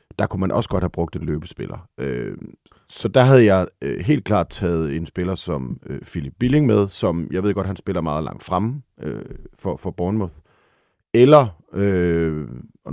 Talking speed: 160 wpm